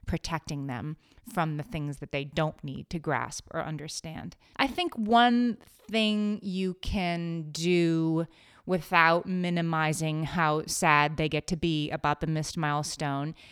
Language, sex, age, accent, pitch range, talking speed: English, female, 30-49, American, 150-180 Hz, 140 wpm